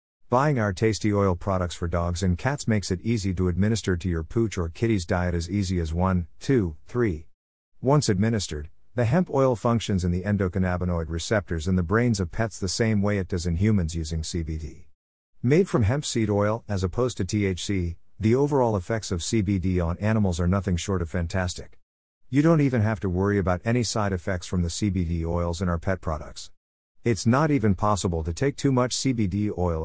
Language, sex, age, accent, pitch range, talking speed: English, male, 50-69, American, 90-115 Hz, 200 wpm